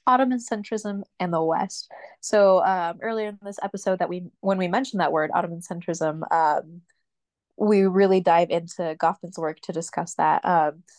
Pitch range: 170-200 Hz